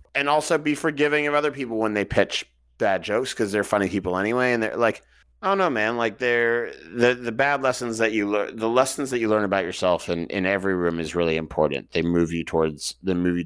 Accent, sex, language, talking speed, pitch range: American, male, English, 235 wpm, 85-110 Hz